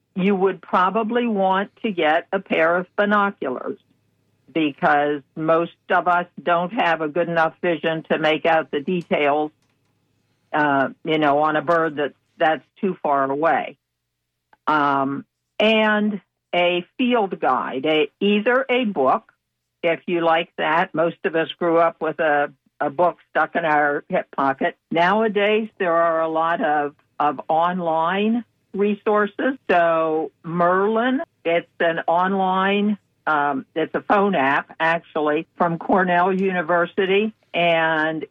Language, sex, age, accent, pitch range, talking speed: English, female, 60-79, American, 155-195 Hz, 135 wpm